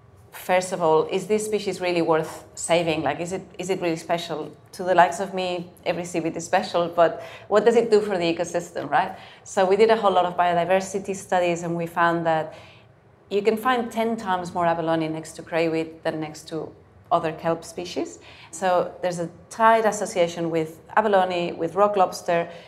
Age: 30-49